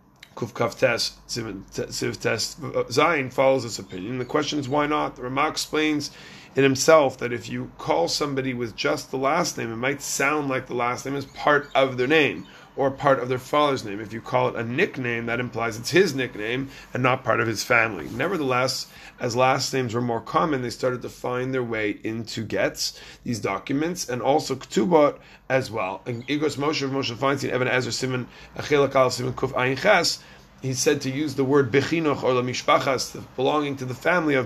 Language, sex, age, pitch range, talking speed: English, male, 30-49, 120-145 Hz, 165 wpm